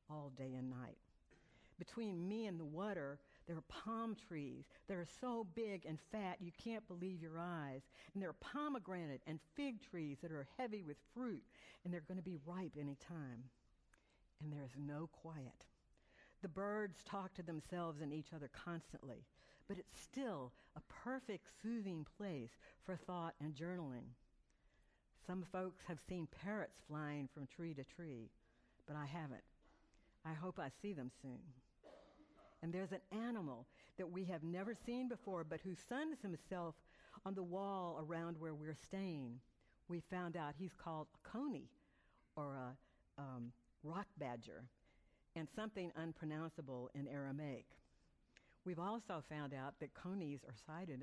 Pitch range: 145-190 Hz